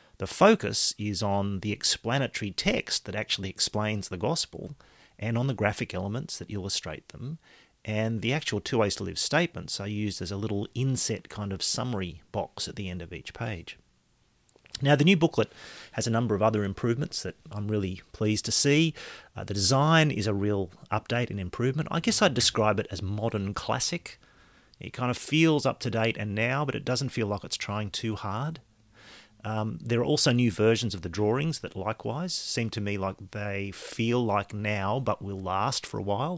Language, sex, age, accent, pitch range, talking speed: English, male, 40-59, Australian, 100-120 Hz, 200 wpm